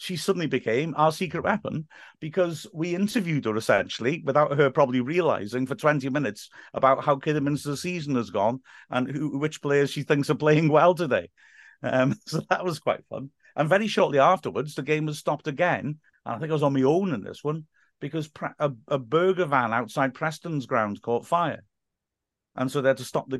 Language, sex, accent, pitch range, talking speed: English, male, British, 120-150 Hz, 195 wpm